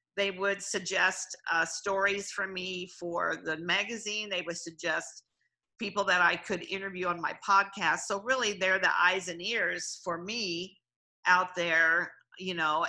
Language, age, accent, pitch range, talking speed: English, 50-69, American, 175-200 Hz, 160 wpm